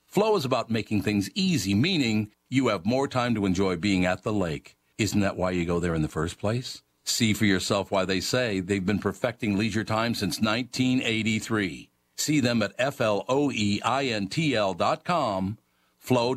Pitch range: 90-120 Hz